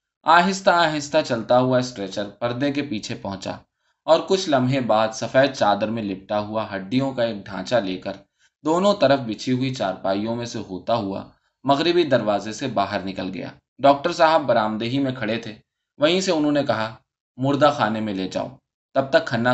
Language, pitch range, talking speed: Urdu, 105-145 Hz, 180 wpm